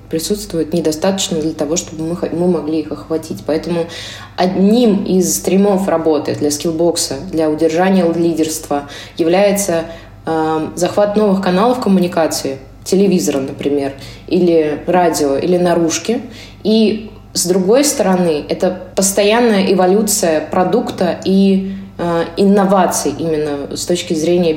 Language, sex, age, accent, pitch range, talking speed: Russian, female, 20-39, native, 155-190 Hz, 110 wpm